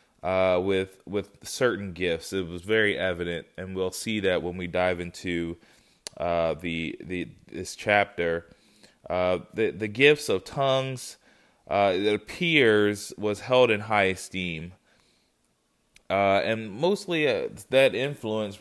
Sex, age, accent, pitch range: male, 20-39, American, 95-115 Hz